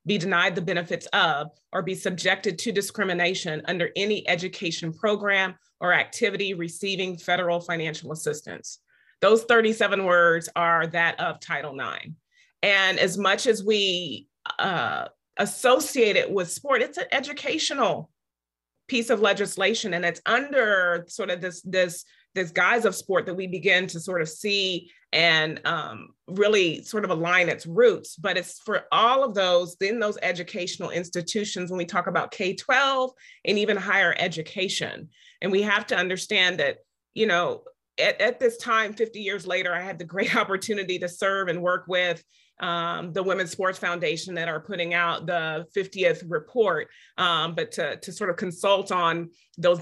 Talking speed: 165 wpm